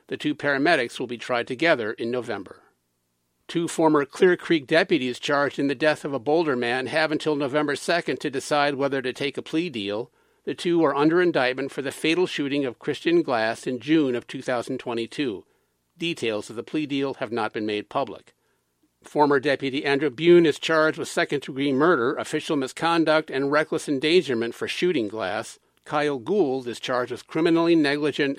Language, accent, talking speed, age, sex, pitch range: English, American, 180 wpm, 50-69, male, 130-160 Hz